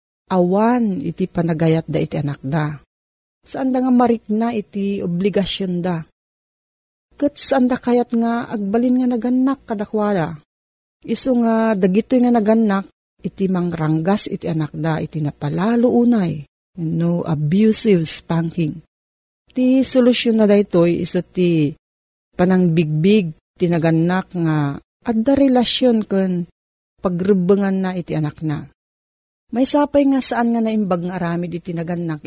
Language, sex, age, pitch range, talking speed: Filipino, female, 40-59, 165-230 Hz, 125 wpm